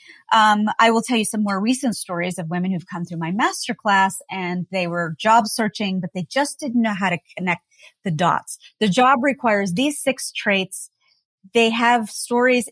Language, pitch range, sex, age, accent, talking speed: English, 175-235 Hz, female, 30-49, American, 190 wpm